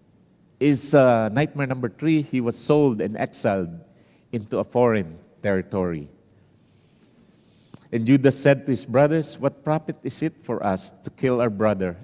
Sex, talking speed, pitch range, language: male, 150 wpm, 105-130 Hz, English